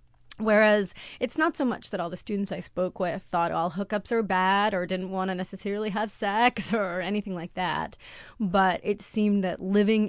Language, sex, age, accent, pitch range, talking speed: English, female, 20-39, American, 165-195 Hz, 195 wpm